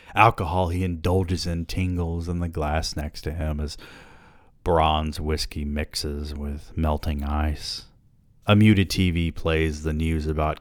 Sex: male